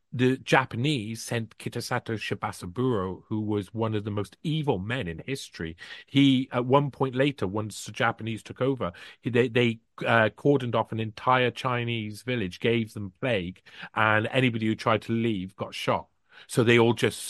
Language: English